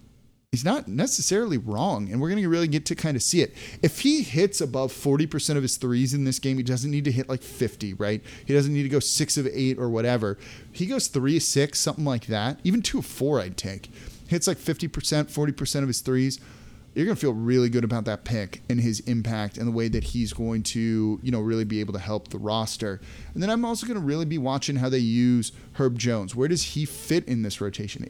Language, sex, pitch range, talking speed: English, male, 115-145 Hz, 245 wpm